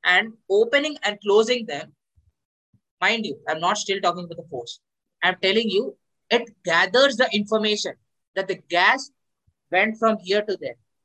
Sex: male